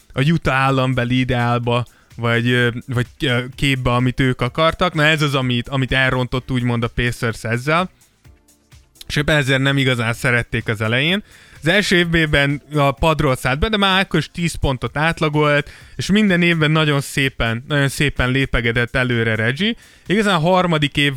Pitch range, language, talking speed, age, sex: 125-155 Hz, Hungarian, 155 wpm, 20-39, male